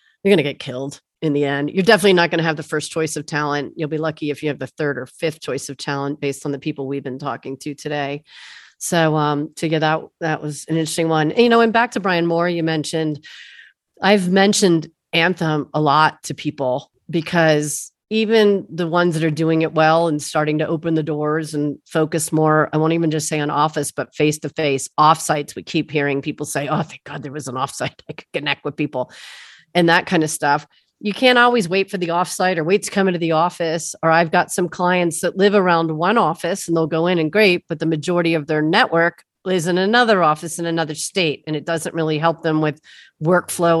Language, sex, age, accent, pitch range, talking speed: English, female, 40-59, American, 150-180 Hz, 235 wpm